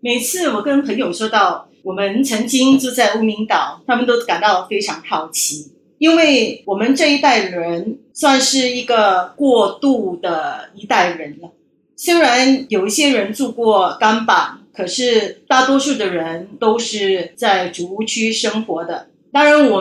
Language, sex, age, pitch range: Chinese, female, 30-49, 195-260 Hz